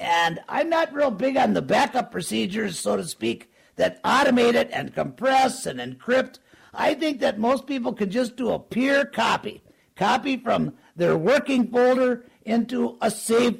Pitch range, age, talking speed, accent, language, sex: 220-270 Hz, 50-69, 170 wpm, American, English, male